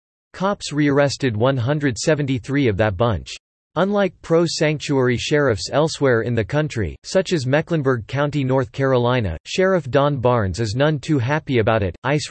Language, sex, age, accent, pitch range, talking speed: English, male, 40-59, American, 120-150 Hz, 140 wpm